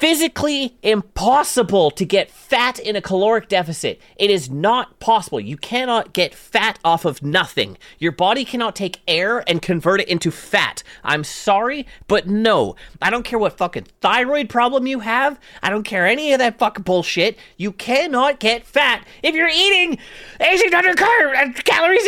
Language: English